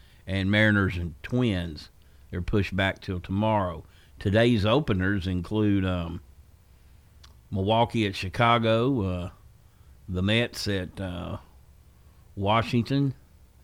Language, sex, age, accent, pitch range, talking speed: English, male, 50-69, American, 80-115 Hz, 95 wpm